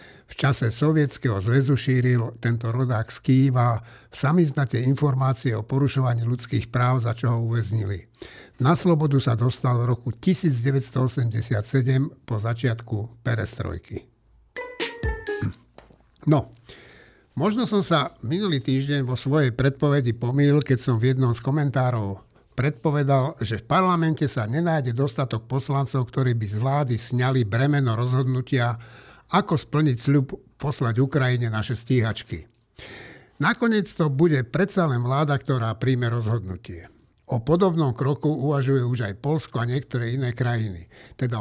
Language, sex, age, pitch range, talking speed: Slovak, male, 60-79, 120-145 Hz, 130 wpm